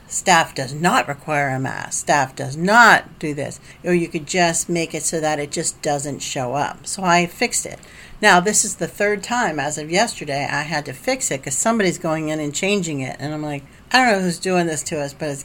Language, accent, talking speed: English, American, 240 wpm